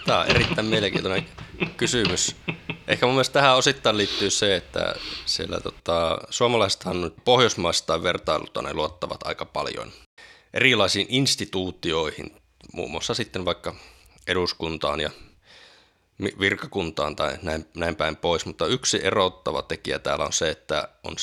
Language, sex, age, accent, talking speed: Finnish, male, 20-39, native, 120 wpm